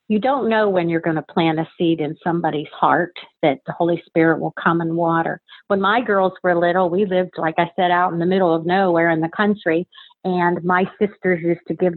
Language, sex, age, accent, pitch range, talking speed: English, female, 50-69, American, 170-210 Hz, 230 wpm